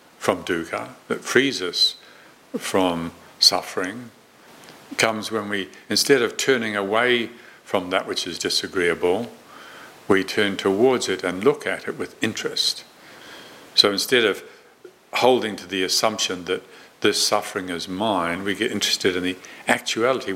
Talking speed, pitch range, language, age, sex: 140 wpm, 90-105 Hz, English, 60-79, male